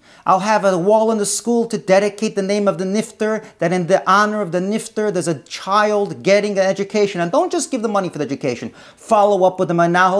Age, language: 40-59, English